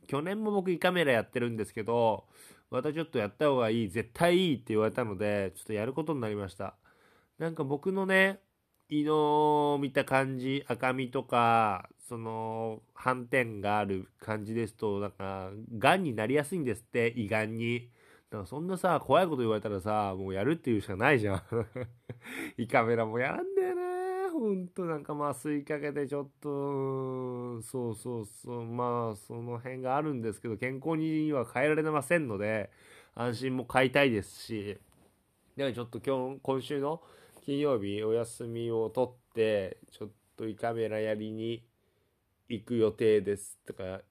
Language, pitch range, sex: Japanese, 110-140 Hz, male